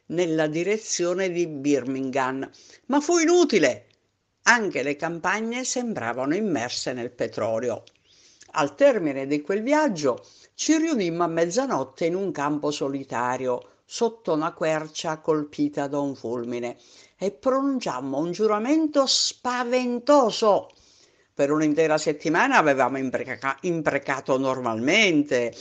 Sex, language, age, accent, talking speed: female, Italian, 60-79, native, 105 wpm